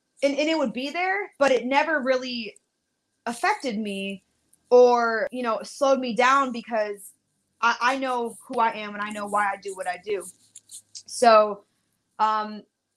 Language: English